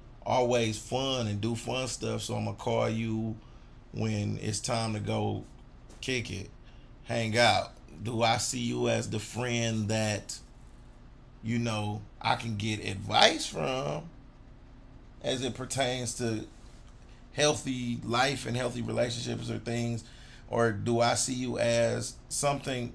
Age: 30-49